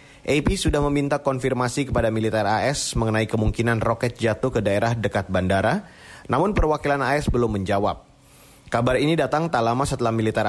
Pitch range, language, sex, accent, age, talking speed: 110-140 Hz, Indonesian, male, native, 30-49, 155 wpm